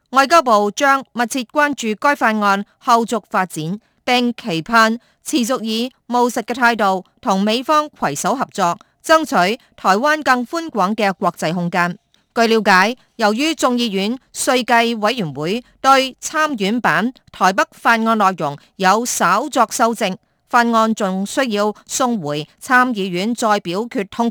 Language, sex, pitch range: Chinese, female, 195-250 Hz